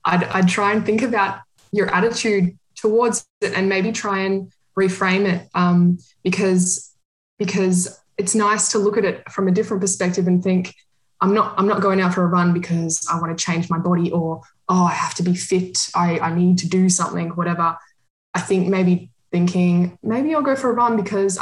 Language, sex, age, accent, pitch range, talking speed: English, female, 20-39, Australian, 170-195 Hz, 200 wpm